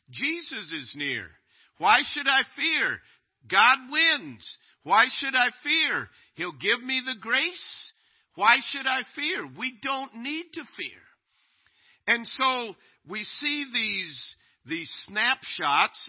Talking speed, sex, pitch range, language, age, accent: 125 wpm, male, 125-205 Hz, English, 50-69, American